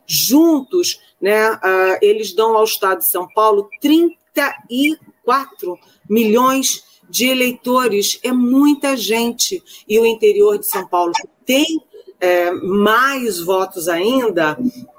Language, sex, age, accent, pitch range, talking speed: Portuguese, female, 40-59, Brazilian, 200-290 Hz, 110 wpm